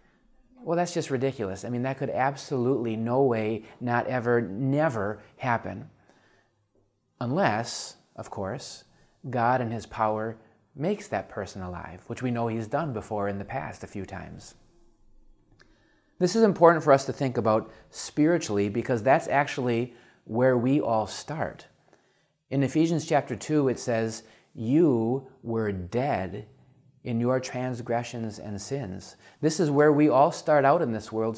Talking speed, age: 150 wpm, 30-49